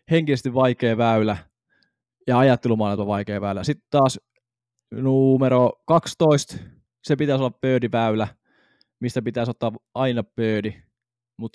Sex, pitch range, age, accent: male, 105-130 Hz, 20-39, native